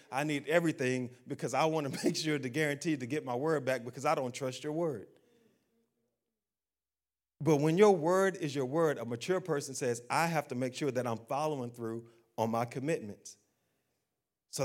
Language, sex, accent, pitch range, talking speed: English, male, American, 125-165 Hz, 190 wpm